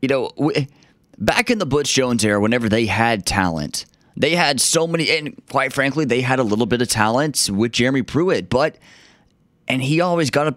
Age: 30-49